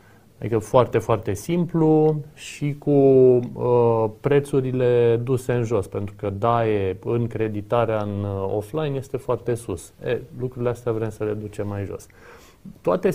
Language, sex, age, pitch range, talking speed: Romanian, male, 30-49, 110-140 Hz, 150 wpm